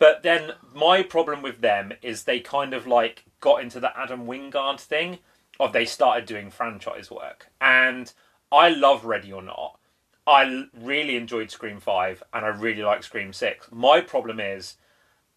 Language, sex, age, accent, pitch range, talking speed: English, male, 30-49, British, 115-160 Hz, 170 wpm